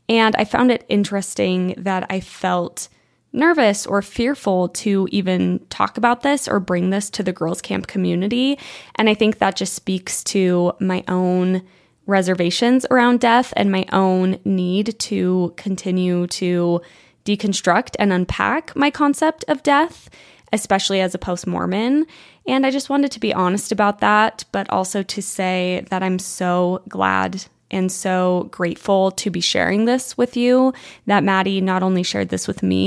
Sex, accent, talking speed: female, American, 160 wpm